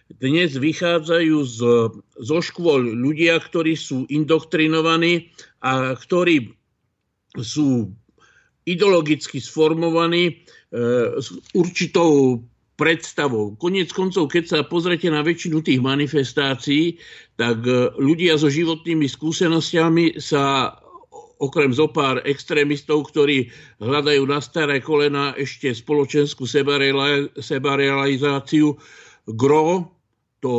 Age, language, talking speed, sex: 50-69, Slovak, 90 wpm, male